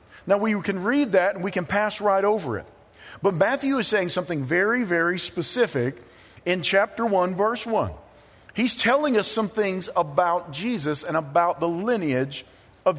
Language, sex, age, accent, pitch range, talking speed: English, male, 50-69, American, 165-215 Hz, 170 wpm